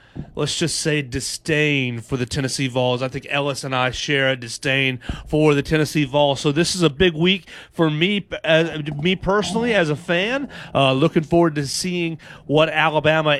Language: English